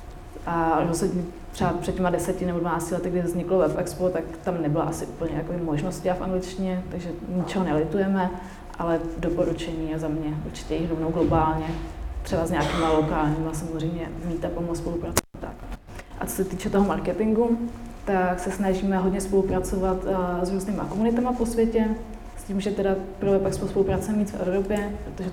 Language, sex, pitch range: Czech, female, 170-190 Hz